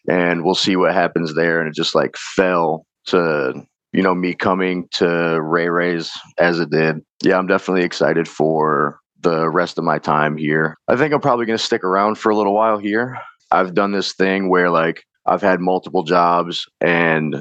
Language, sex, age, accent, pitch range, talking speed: English, male, 30-49, American, 85-95 Hz, 195 wpm